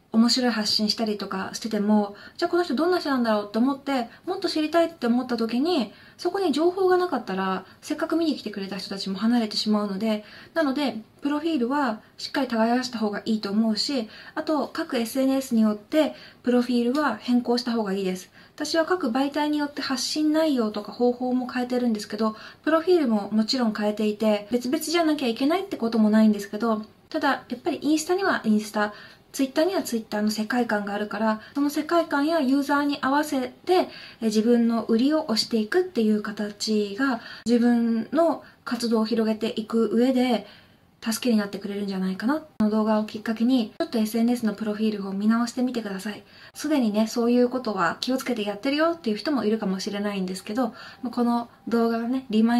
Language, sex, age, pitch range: Japanese, female, 20-39, 215-275 Hz